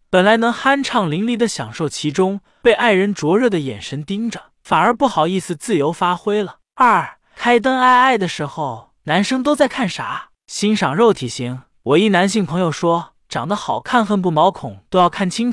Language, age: Chinese, 20-39